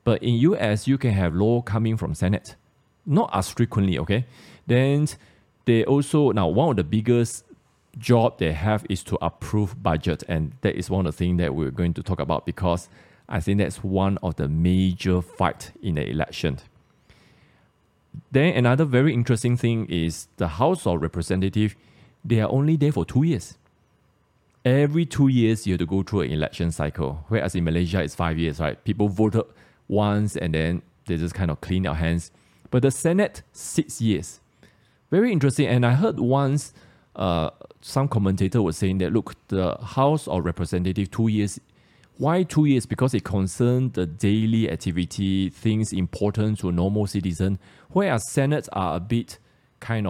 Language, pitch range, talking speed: English, 90-120 Hz, 175 wpm